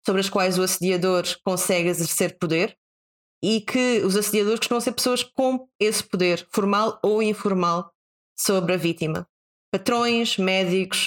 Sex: female